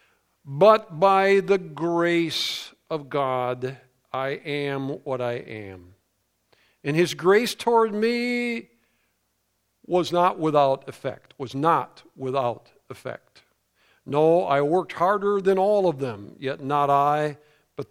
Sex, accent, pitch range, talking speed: male, American, 130-195 Hz, 120 wpm